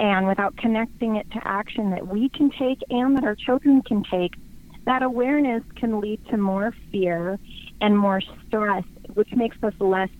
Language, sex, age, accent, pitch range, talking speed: English, female, 30-49, American, 195-250 Hz, 175 wpm